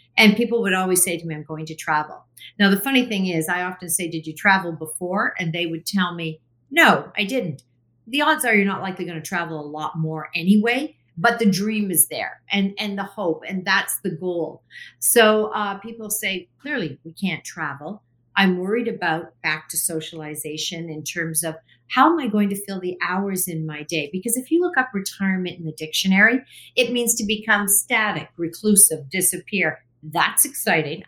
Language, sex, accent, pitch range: English, female, American, 160-210 Hz